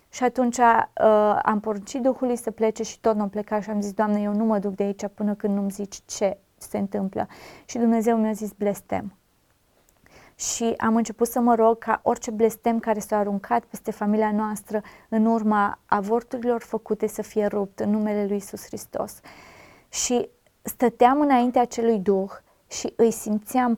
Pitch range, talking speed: 205-235 Hz, 175 wpm